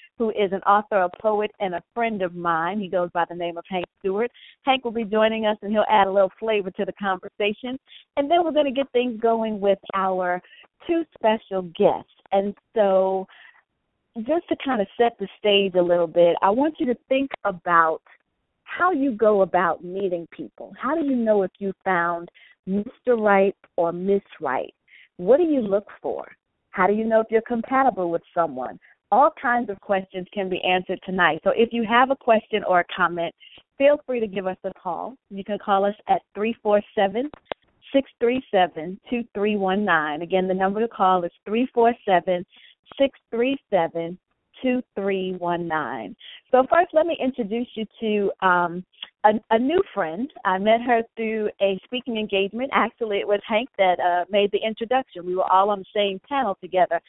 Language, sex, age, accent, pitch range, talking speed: English, female, 40-59, American, 185-235 Hz, 180 wpm